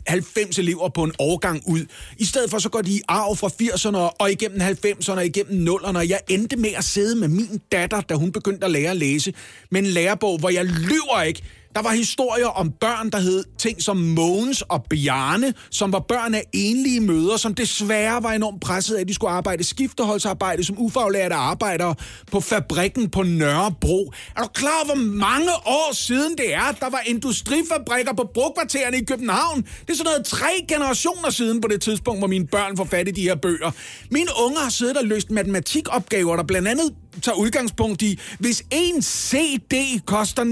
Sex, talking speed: male, 195 wpm